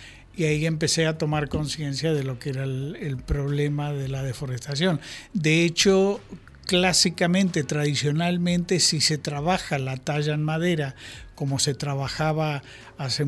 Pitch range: 150-180 Hz